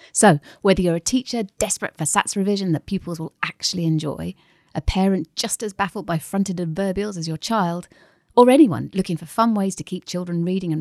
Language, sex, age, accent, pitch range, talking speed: English, female, 30-49, British, 155-195 Hz, 200 wpm